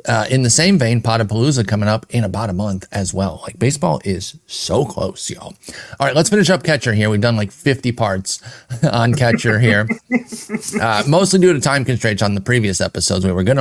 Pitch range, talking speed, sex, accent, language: 110-140 Hz, 215 wpm, male, American, English